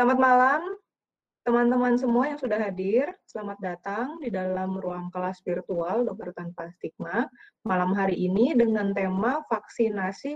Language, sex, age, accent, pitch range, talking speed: Indonesian, female, 20-39, native, 190-245 Hz, 135 wpm